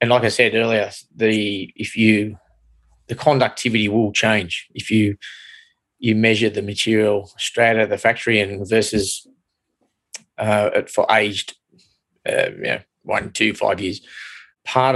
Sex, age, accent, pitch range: male, 20-39, Australian, 105-120 Hz